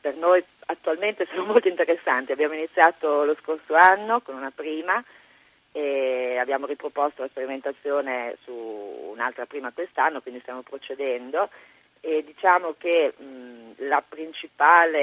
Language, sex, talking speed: Italian, female, 125 wpm